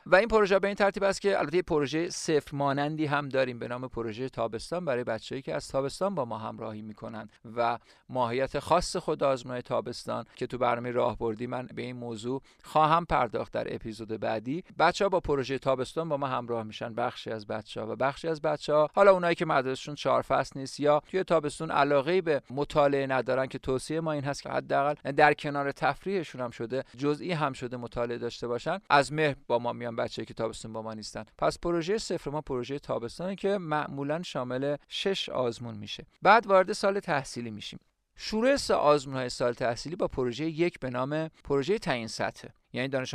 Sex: male